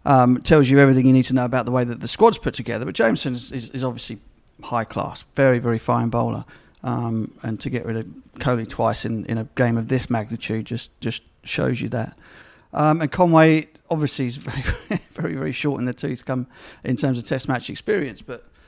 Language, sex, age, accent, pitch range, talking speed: English, male, 50-69, British, 125-145 Hz, 220 wpm